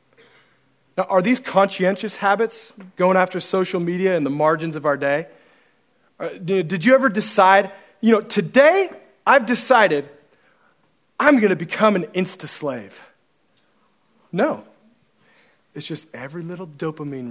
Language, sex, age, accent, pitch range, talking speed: English, male, 40-59, American, 130-175 Hz, 125 wpm